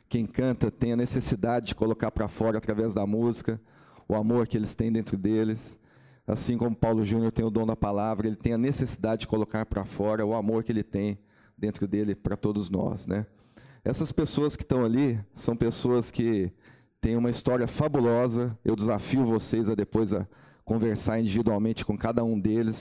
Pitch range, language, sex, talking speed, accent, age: 105-120 Hz, Portuguese, male, 185 wpm, Brazilian, 40-59